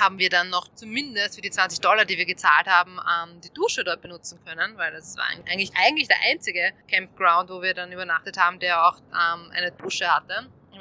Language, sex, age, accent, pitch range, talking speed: German, female, 20-39, German, 170-215 Hz, 215 wpm